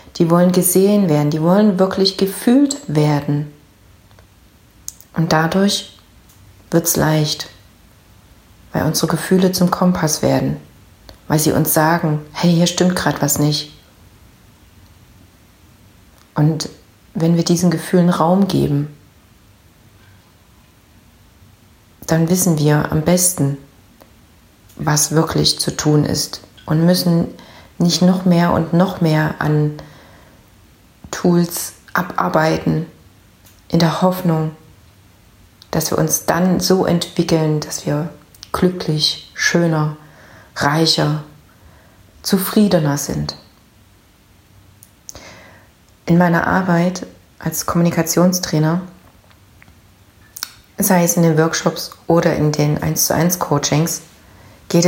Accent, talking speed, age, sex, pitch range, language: German, 100 wpm, 30-49, female, 105-170 Hz, German